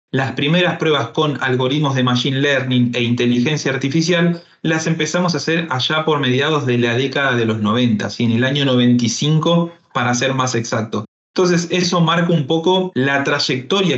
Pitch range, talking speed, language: 125-155 Hz, 170 wpm, Spanish